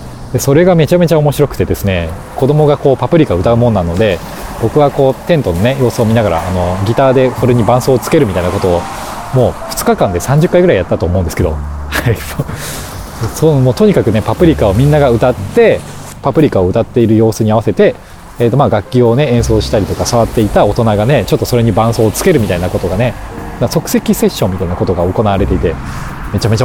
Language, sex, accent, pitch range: Japanese, male, native, 95-135 Hz